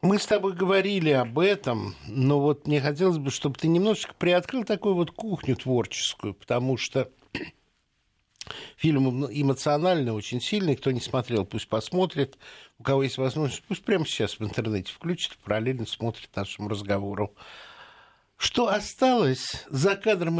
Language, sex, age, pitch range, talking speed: Russian, male, 60-79, 115-165 Hz, 140 wpm